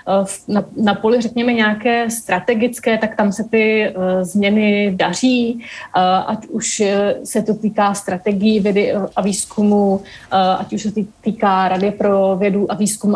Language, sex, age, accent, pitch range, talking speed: Czech, female, 30-49, native, 195-210 Hz, 155 wpm